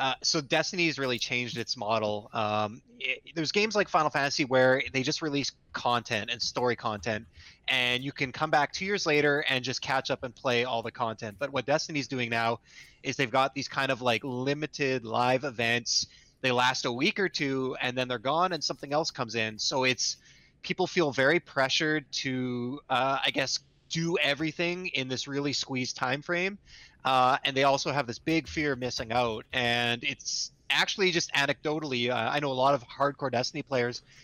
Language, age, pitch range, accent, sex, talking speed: English, 20-39, 125-145 Hz, American, male, 200 wpm